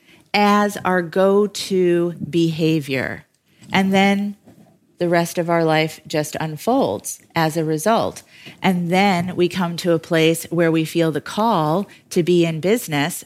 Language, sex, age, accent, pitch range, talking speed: English, female, 30-49, American, 160-190 Hz, 145 wpm